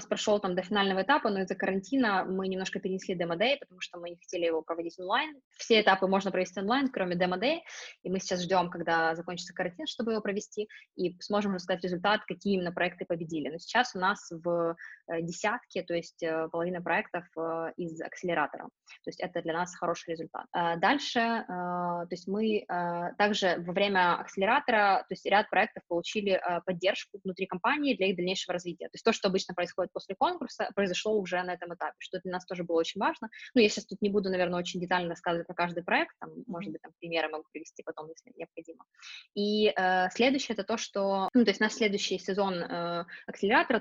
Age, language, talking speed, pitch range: 20-39, Russian, 195 wpm, 175-210 Hz